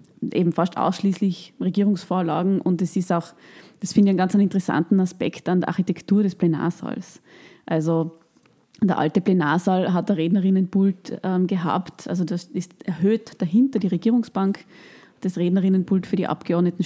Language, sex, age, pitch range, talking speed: German, female, 20-39, 170-190 Hz, 140 wpm